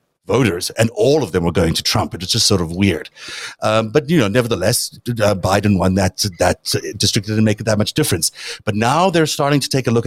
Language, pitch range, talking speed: English, 95-120 Hz, 230 wpm